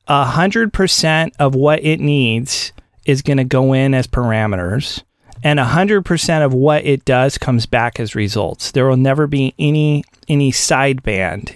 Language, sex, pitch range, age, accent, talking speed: English, male, 130-165 Hz, 30-49, American, 165 wpm